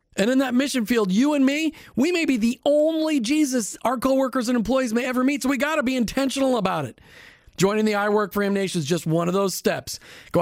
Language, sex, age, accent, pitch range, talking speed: English, male, 40-59, American, 190-245 Hz, 250 wpm